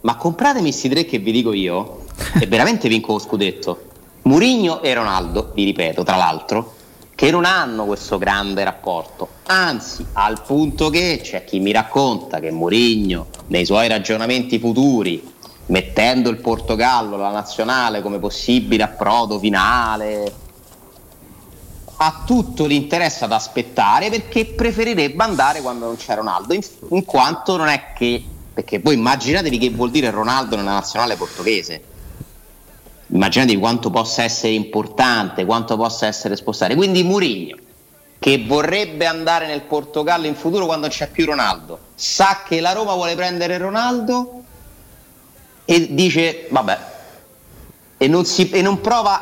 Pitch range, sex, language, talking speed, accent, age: 105-165 Hz, male, Italian, 140 wpm, native, 30-49